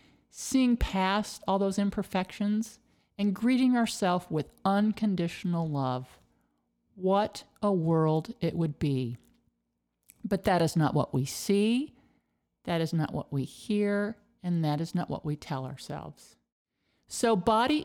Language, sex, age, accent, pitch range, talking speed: English, male, 50-69, American, 150-205 Hz, 135 wpm